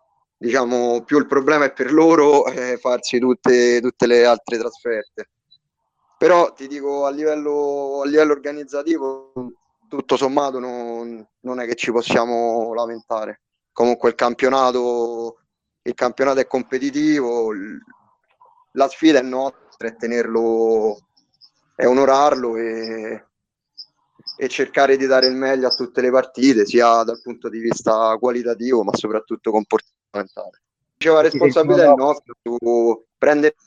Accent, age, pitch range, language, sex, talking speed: native, 30-49, 120-145 Hz, Italian, male, 130 wpm